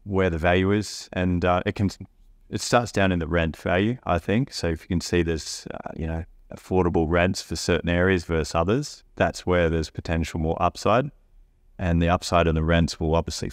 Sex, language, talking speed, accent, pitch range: male, English, 205 wpm, Australian, 85-95 Hz